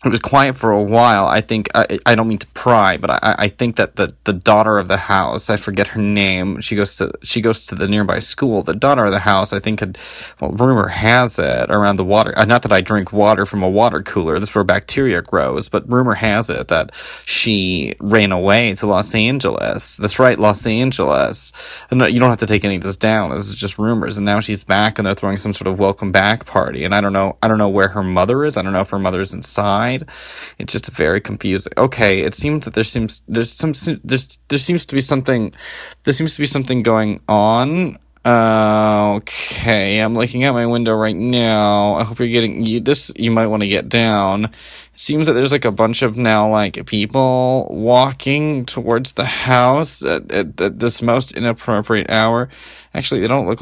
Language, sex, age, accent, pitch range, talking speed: English, male, 20-39, American, 100-120 Hz, 220 wpm